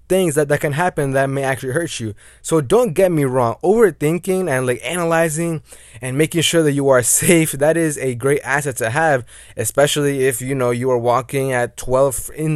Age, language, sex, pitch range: 20-39, English, male, 125-150 Hz